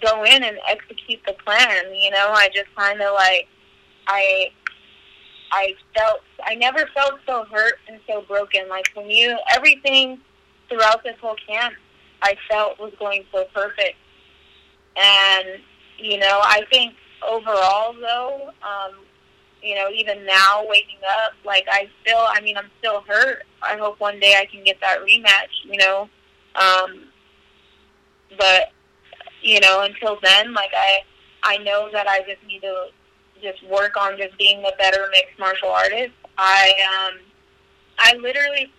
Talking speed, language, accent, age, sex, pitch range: 155 wpm, English, American, 20-39, female, 195-220 Hz